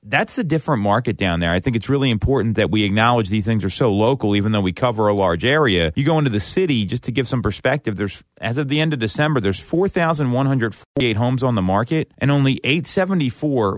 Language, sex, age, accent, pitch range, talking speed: English, male, 30-49, American, 105-140 Hz, 250 wpm